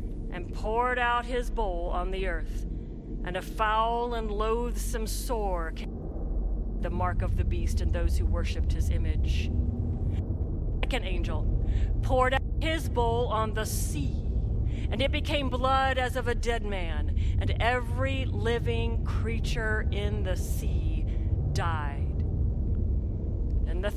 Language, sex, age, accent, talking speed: English, female, 40-59, American, 140 wpm